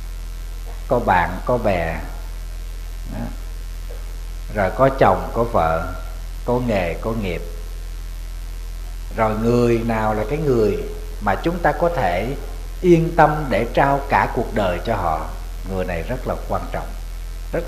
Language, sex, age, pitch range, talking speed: Vietnamese, male, 60-79, 85-140 Hz, 135 wpm